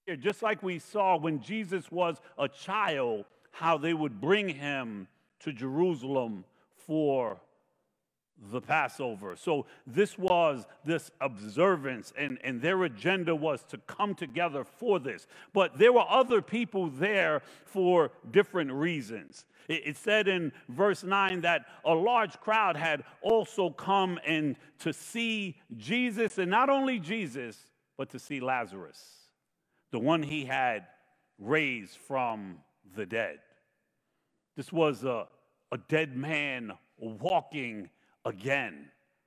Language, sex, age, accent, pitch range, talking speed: English, male, 50-69, American, 140-195 Hz, 125 wpm